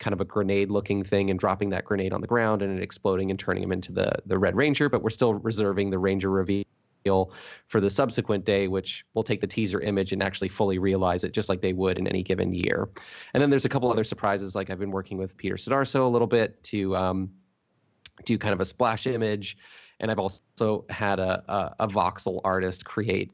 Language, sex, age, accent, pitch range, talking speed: English, male, 30-49, American, 95-110 Hz, 225 wpm